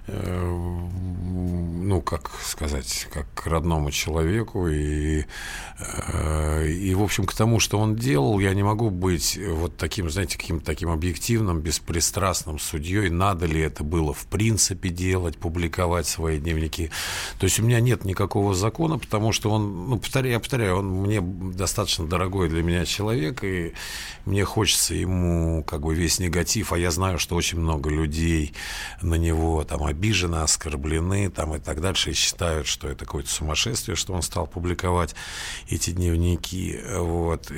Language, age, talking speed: Russian, 50-69, 155 wpm